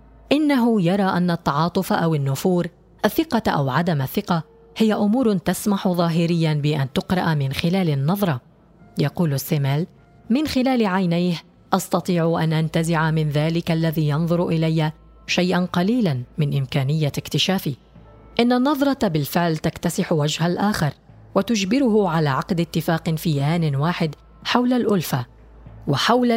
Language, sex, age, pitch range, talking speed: Arabic, female, 20-39, 155-200 Hz, 120 wpm